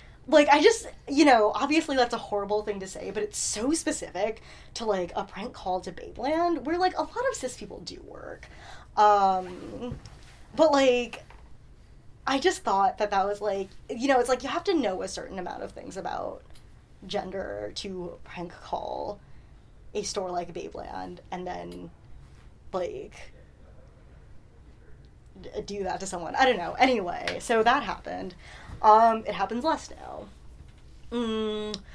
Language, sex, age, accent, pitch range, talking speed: English, female, 10-29, American, 175-235 Hz, 160 wpm